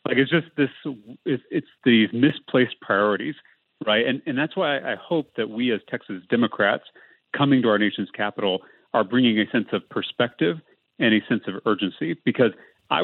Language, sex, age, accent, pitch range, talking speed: English, male, 40-59, American, 105-130 Hz, 175 wpm